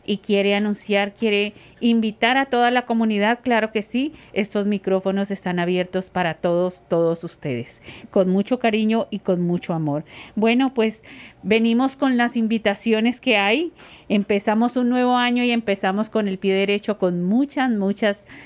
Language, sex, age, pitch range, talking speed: English, female, 50-69, 185-225 Hz, 155 wpm